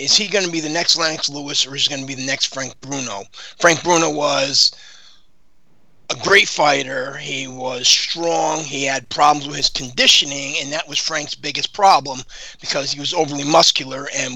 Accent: American